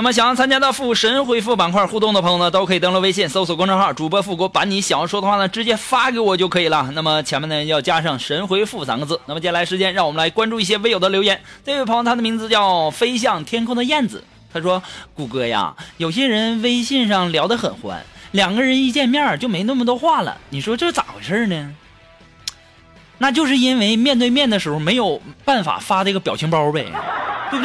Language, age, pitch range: Chinese, 20-39, 175-255 Hz